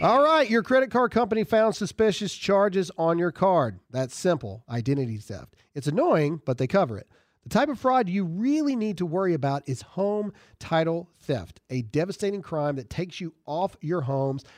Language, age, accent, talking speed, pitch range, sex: English, 40-59, American, 185 wpm, 150-215 Hz, male